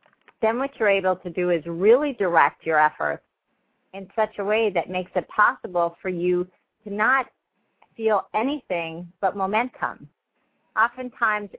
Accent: American